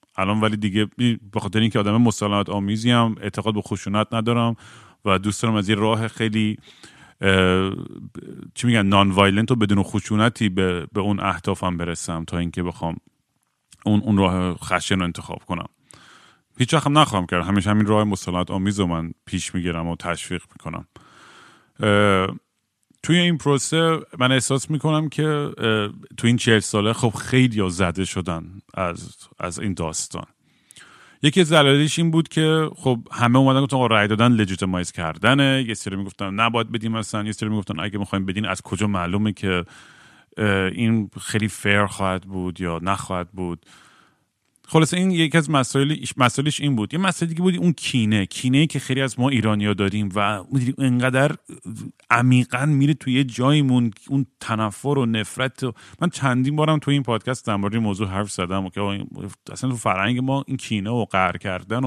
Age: 40-59